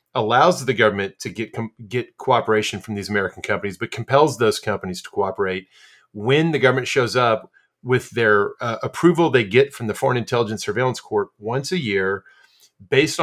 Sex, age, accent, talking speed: male, 40-59, American, 170 wpm